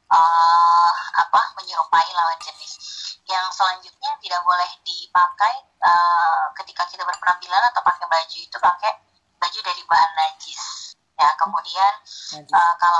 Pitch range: 165-210 Hz